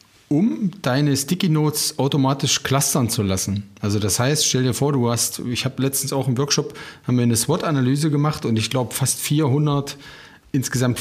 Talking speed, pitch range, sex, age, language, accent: 180 wpm, 115-150 Hz, male, 40-59, German, German